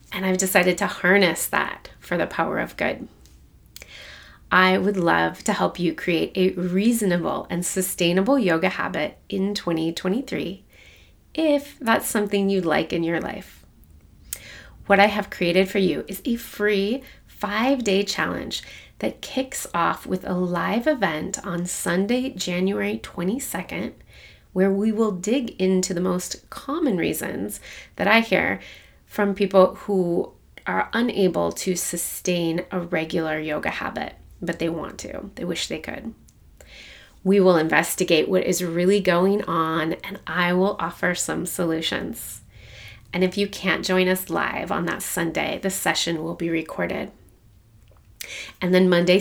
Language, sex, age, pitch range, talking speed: English, female, 30-49, 170-205 Hz, 145 wpm